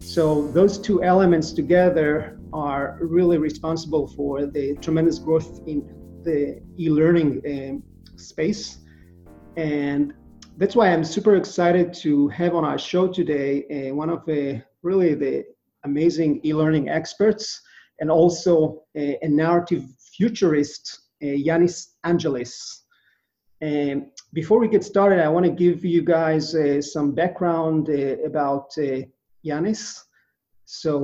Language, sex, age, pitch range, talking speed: English, male, 30-49, 150-175 Hz, 125 wpm